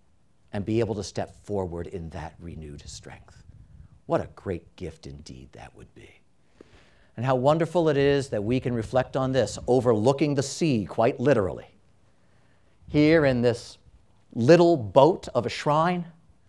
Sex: male